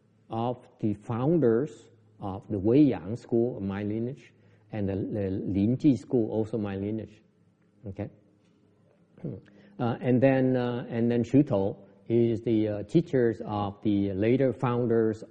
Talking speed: 125 wpm